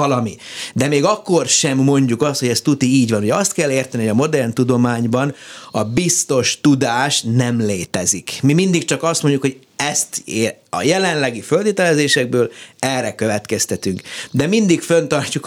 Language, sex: Hungarian, male